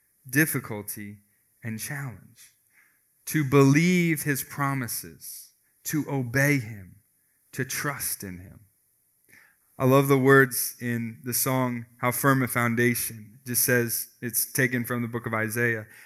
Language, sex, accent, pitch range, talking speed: English, male, American, 115-155 Hz, 130 wpm